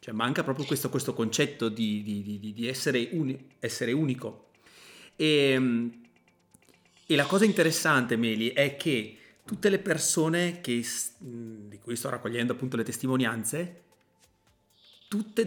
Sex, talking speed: male, 115 wpm